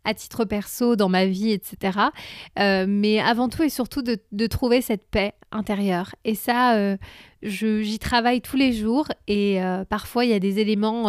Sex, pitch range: female, 205-250 Hz